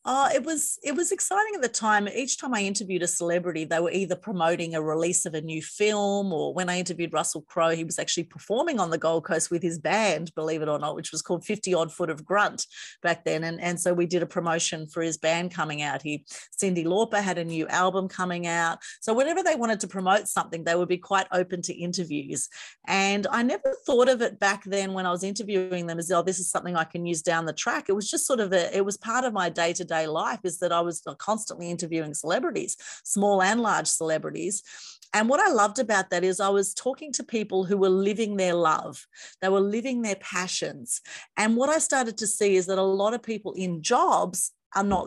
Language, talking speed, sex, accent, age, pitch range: English, 235 wpm, female, Australian, 30-49, 170-205 Hz